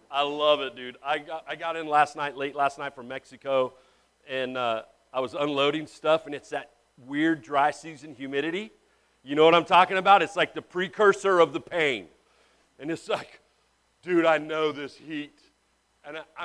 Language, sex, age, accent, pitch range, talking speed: English, male, 40-59, American, 135-180 Hz, 190 wpm